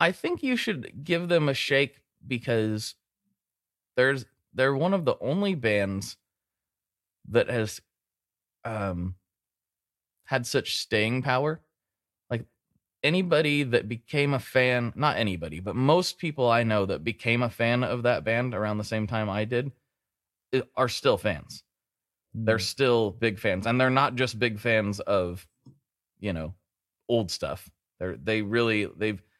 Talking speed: 145 wpm